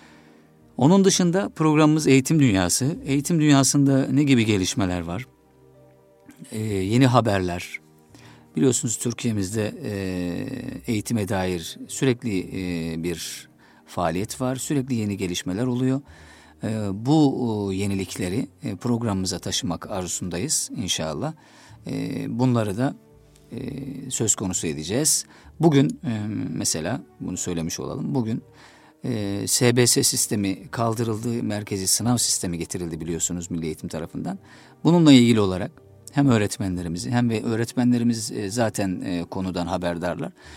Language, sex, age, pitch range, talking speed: Turkish, male, 50-69, 90-130 Hz, 100 wpm